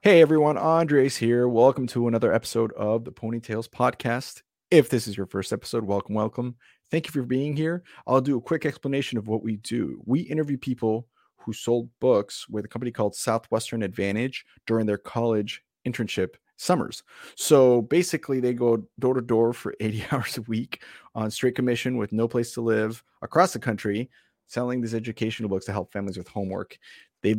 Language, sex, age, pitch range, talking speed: English, male, 30-49, 100-120 Hz, 185 wpm